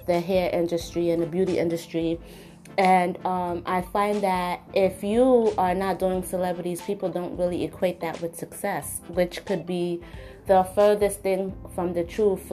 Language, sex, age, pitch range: English, female, 20-39, 180-205 Hz